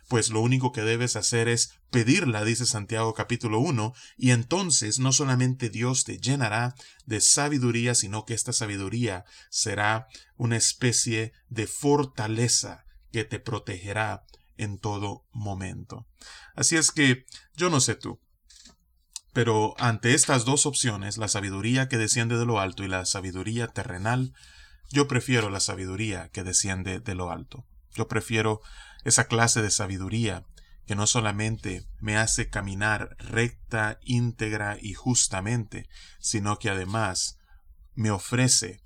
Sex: male